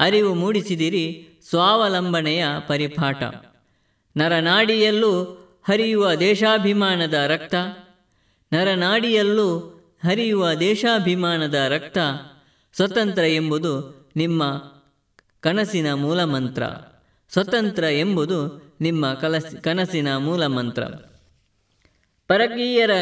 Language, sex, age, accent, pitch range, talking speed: Kannada, female, 20-39, native, 145-195 Hz, 65 wpm